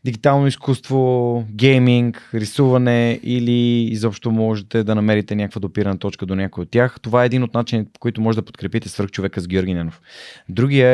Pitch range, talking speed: 100-120 Hz, 170 wpm